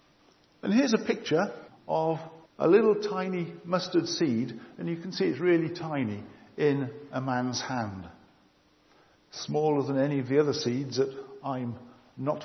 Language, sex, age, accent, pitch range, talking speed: English, male, 50-69, British, 125-160 Hz, 150 wpm